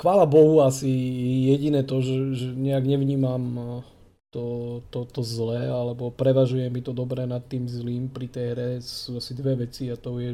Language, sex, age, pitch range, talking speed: Slovak, male, 20-39, 115-130 Hz, 180 wpm